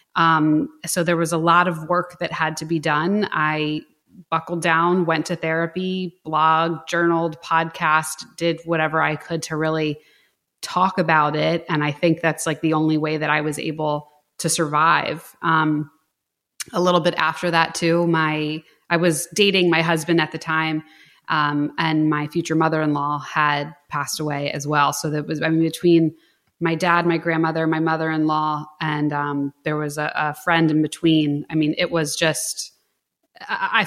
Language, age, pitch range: English, 20-39, 155-175 Hz